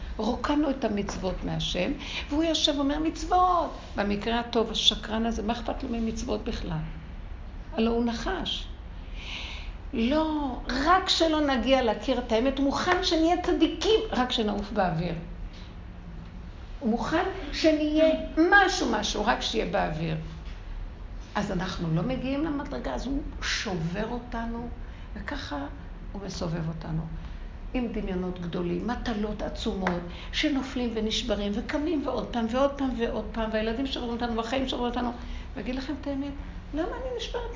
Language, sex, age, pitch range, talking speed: Hebrew, female, 60-79, 195-295 Hz, 130 wpm